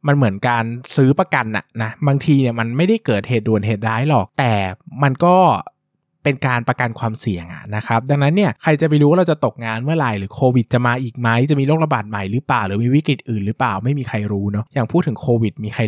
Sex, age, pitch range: male, 20-39, 110-145 Hz